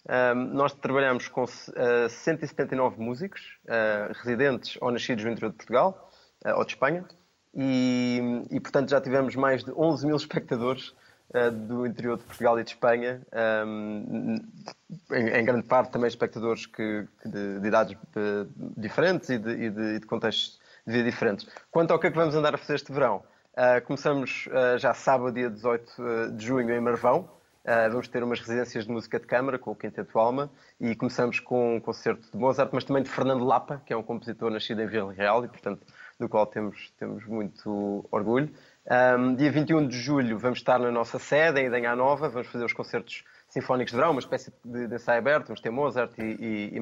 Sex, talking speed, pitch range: male, 185 wpm, 115-135 Hz